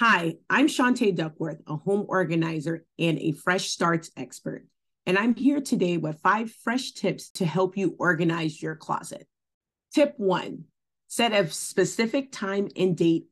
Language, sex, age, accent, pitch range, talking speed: English, female, 30-49, American, 160-210 Hz, 155 wpm